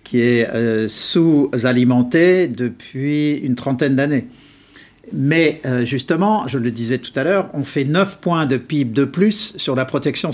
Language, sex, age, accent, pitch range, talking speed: French, male, 50-69, French, 130-175 Hz, 165 wpm